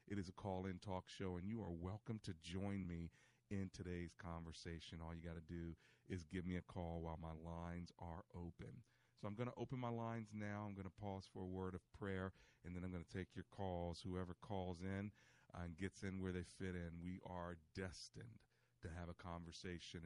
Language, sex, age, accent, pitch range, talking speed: English, male, 40-59, American, 85-110 Hz, 220 wpm